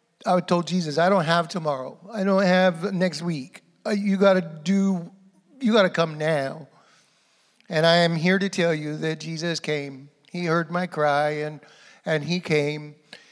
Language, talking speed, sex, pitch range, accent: English, 175 wpm, male, 165-195 Hz, American